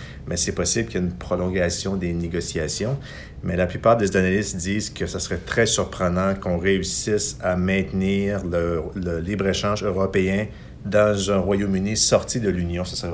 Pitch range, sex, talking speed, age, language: 85-100 Hz, male, 170 wpm, 50-69, French